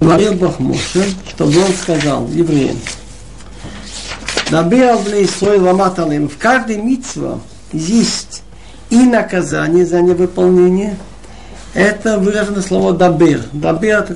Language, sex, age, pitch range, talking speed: Russian, male, 60-79, 165-205 Hz, 105 wpm